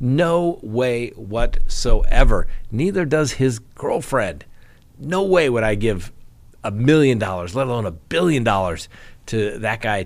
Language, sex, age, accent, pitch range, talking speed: English, male, 40-59, American, 100-125 Hz, 135 wpm